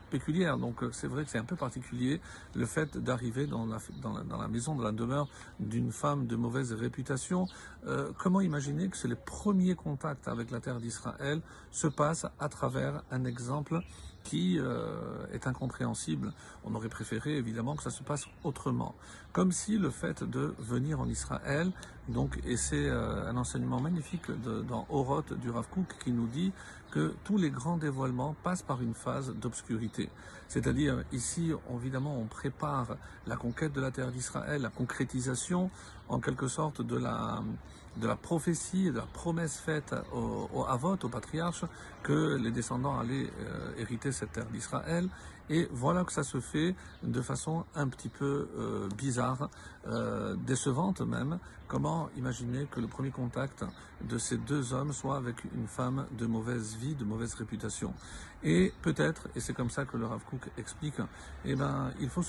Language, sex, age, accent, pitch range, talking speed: French, male, 50-69, French, 120-155 Hz, 175 wpm